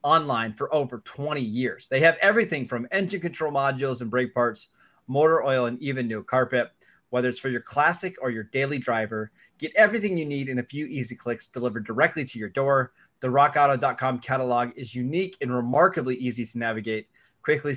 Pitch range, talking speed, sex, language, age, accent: 120-145 Hz, 185 wpm, male, English, 20-39, American